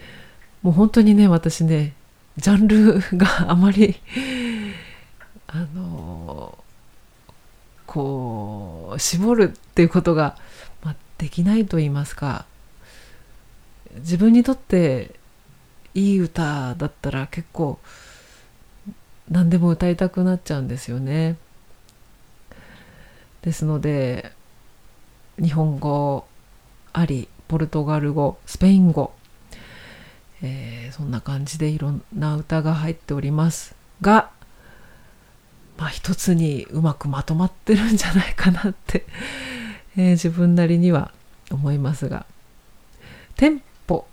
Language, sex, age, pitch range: Japanese, female, 40-59, 140-190 Hz